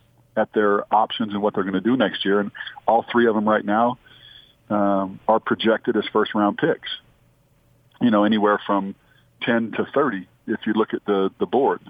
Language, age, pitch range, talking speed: English, 40-59, 100-115 Hz, 190 wpm